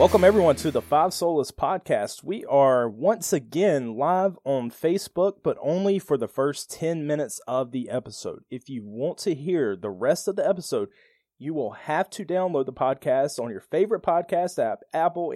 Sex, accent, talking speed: male, American, 185 wpm